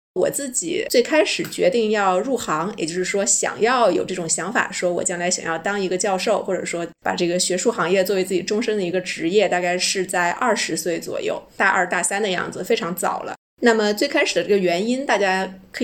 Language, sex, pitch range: Chinese, female, 180-220 Hz